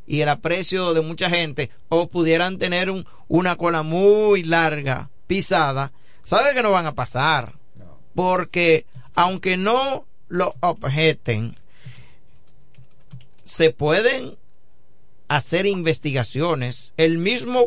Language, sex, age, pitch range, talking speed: Spanish, male, 50-69, 140-180 Hz, 105 wpm